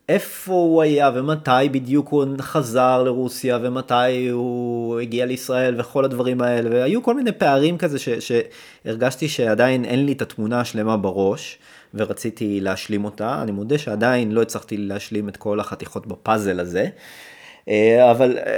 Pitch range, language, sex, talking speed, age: 105-150 Hz, Hebrew, male, 140 wpm, 30-49